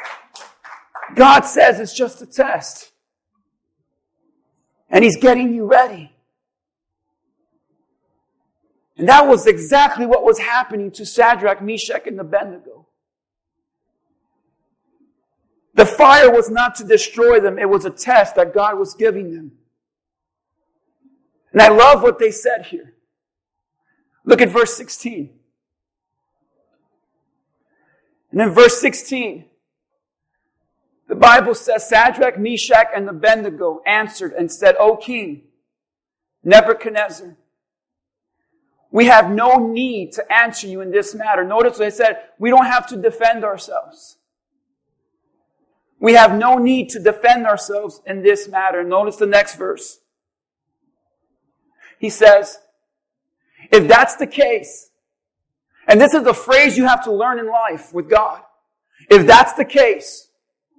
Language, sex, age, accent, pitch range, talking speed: English, male, 40-59, American, 210-280 Hz, 120 wpm